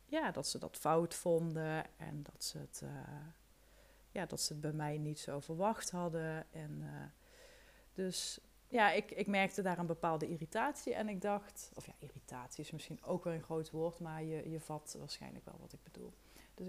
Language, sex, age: Dutch, female, 30-49